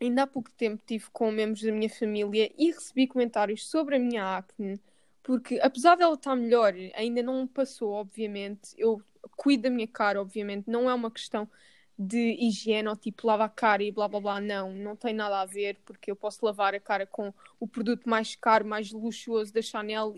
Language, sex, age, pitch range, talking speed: Portuguese, female, 20-39, 220-270 Hz, 205 wpm